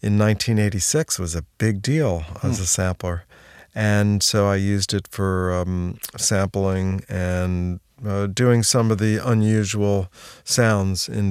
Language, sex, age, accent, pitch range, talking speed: English, male, 50-69, American, 95-110 Hz, 140 wpm